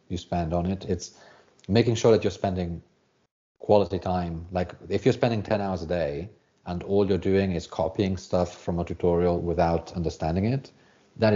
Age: 40-59